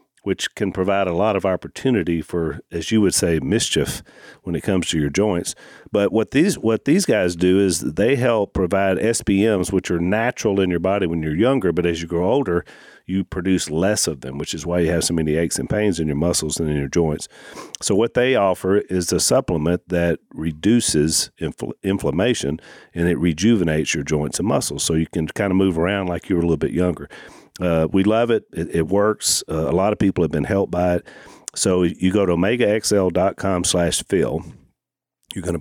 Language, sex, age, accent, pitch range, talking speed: English, male, 50-69, American, 80-100 Hz, 210 wpm